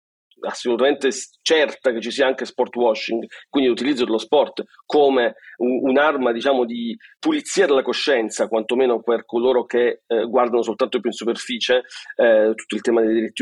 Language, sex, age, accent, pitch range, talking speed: Italian, male, 40-59, native, 120-160 Hz, 155 wpm